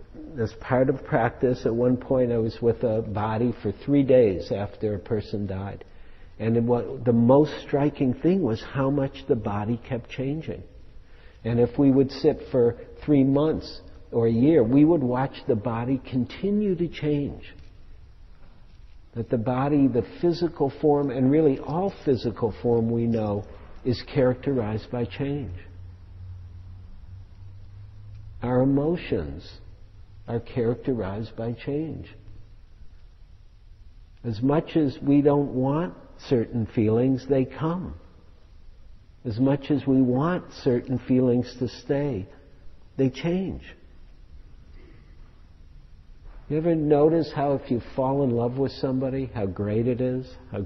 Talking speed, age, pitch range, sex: 130 wpm, 60-79, 95-135 Hz, male